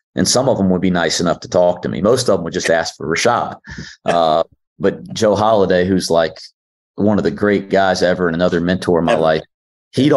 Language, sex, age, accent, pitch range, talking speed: English, male, 30-49, American, 85-100 Hz, 230 wpm